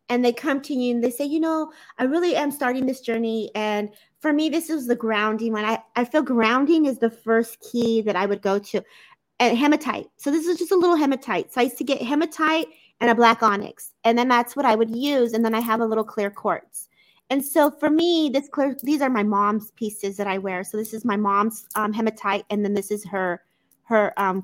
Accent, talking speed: American, 245 wpm